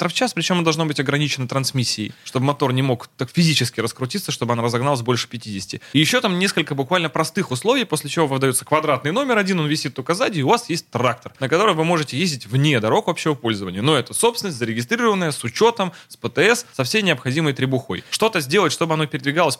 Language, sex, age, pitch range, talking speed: Russian, male, 20-39, 135-190 Hz, 205 wpm